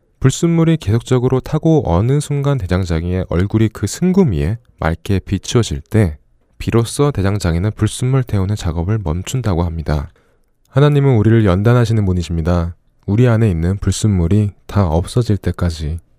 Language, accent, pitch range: Korean, native, 90-130 Hz